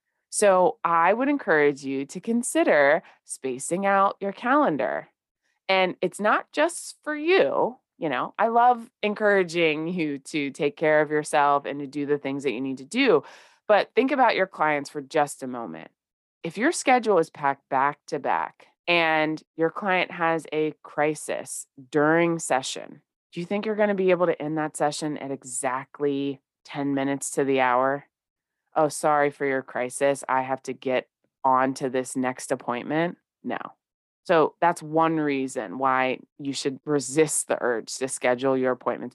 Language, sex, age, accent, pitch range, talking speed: English, female, 20-39, American, 140-215 Hz, 170 wpm